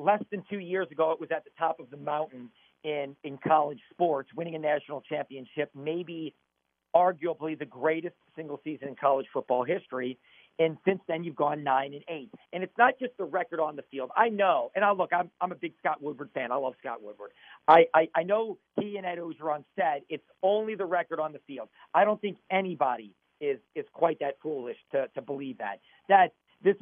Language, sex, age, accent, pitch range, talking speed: English, male, 50-69, American, 145-190 Hz, 215 wpm